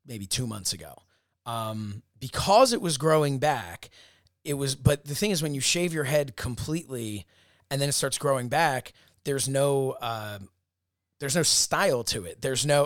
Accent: American